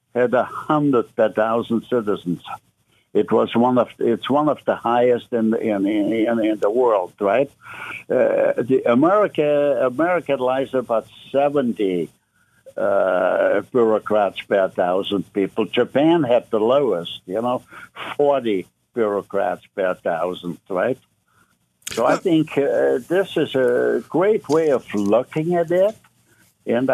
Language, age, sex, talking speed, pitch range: English, 60-79, male, 130 wpm, 115-145 Hz